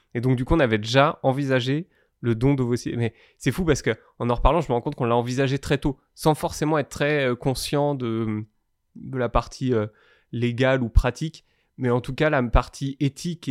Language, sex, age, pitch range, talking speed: French, male, 20-39, 115-145 Hz, 215 wpm